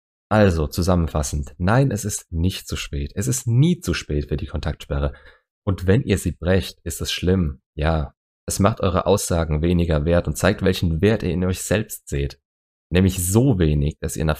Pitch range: 75-100 Hz